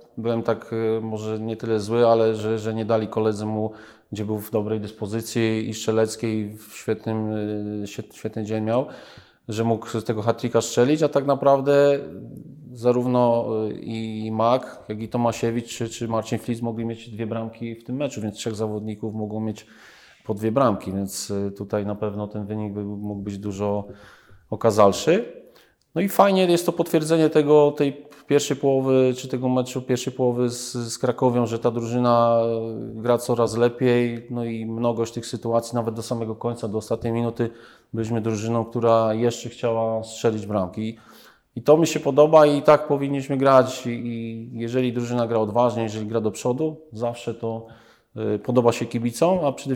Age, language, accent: 40-59, Polish, native